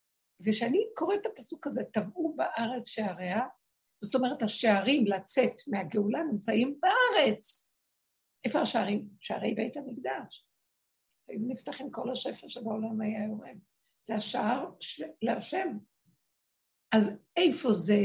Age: 60-79